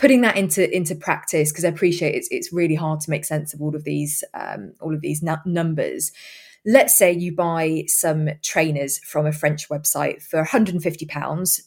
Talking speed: 185 wpm